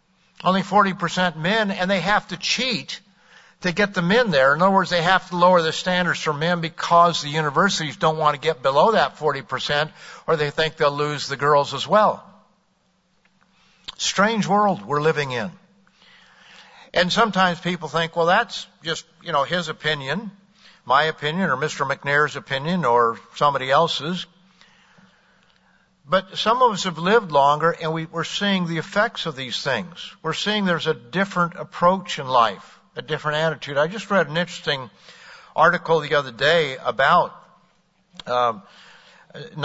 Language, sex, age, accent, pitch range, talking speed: English, male, 60-79, American, 150-190 Hz, 160 wpm